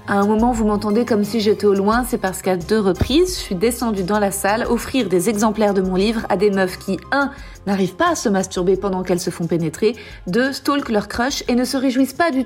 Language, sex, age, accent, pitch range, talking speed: French, female, 30-49, French, 185-230 Hz, 250 wpm